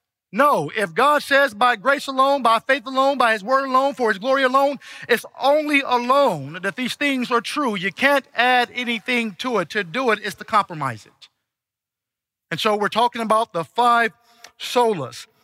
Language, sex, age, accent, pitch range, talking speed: English, male, 50-69, American, 175-270 Hz, 185 wpm